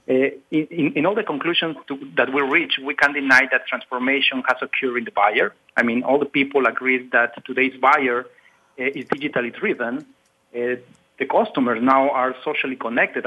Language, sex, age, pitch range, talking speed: English, male, 40-59, 125-145 Hz, 180 wpm